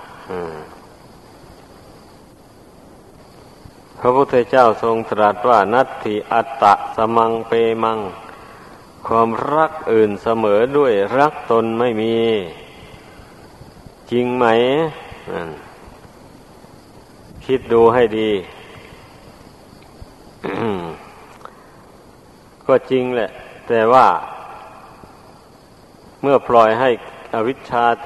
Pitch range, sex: 110-120 Hz, male